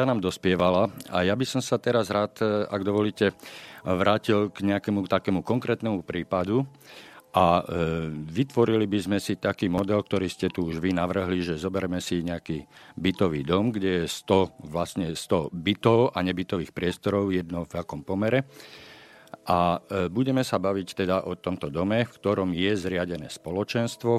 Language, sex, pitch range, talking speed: Slovak, male, 90-110 Hz, 155 wpm